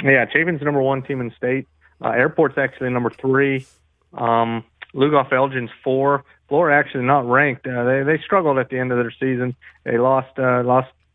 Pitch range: 120-135 Hz